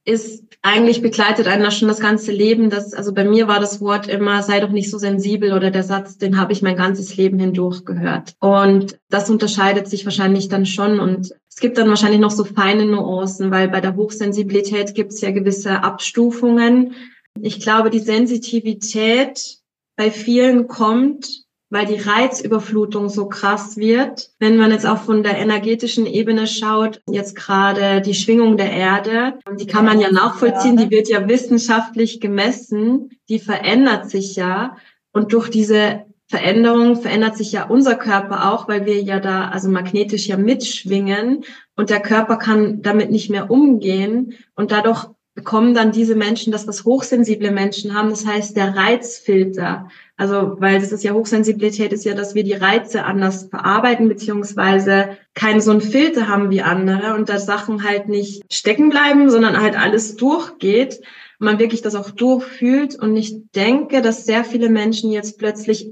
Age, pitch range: 20-39, 200-230 Hz